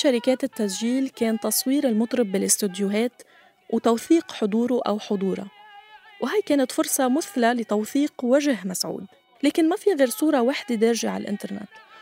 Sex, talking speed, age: female, 130 wpm, 20-39